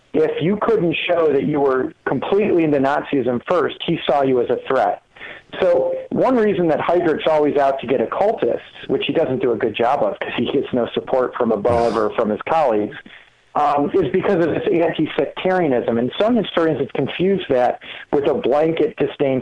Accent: American